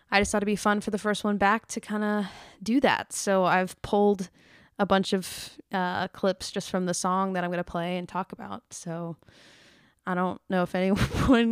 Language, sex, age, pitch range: English, female, 20-39, 185-210 Hz